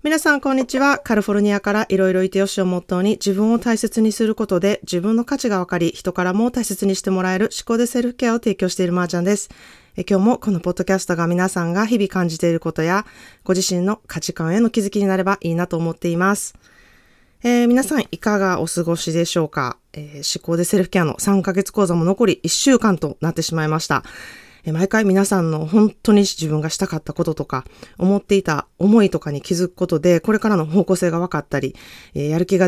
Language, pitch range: Japanese, 160-205 Hz